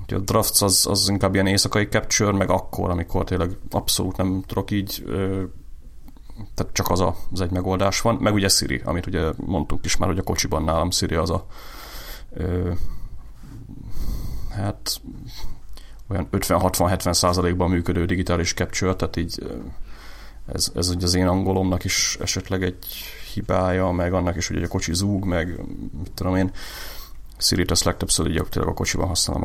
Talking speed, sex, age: 150 wpm, male, 30-49